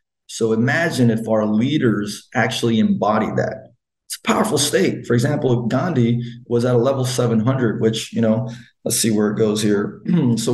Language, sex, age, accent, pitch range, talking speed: English, male, 20-39, American, 110-130 Hz, 175 wpm